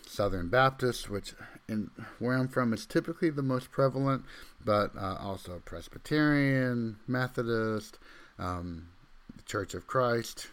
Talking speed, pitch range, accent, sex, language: 120 wpm, 105-130 Hz, American, male, English